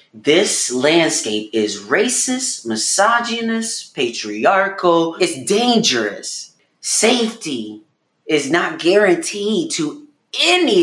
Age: 30-49